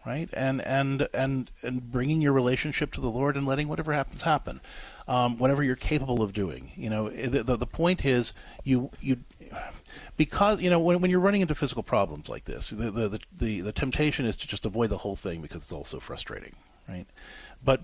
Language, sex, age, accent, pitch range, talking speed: English, male, 40-59, American, 105-140 Hz, 210 wpm